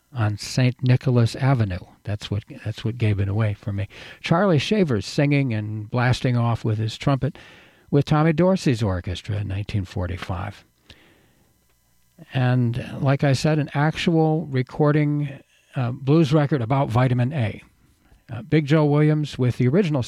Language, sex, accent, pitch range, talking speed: English, male, American, 110-145 Hz, 145 wpm